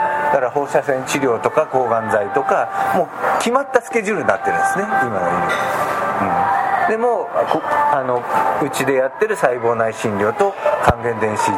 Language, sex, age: Japanese, male, 50-69